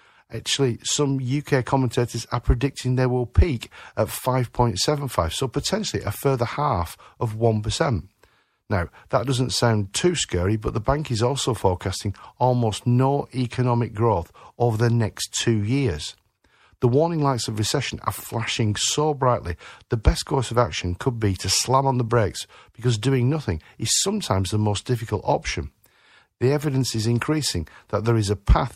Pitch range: 105-135 Hz